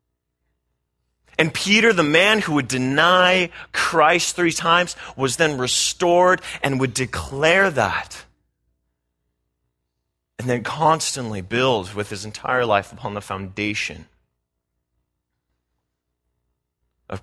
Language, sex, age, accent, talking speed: English, male, 30-49, American, 100 wpm